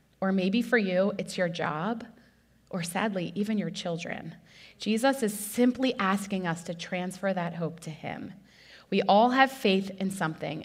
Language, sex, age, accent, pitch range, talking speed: English, female, 30-49, American, 170-215 Hz, 165 wpm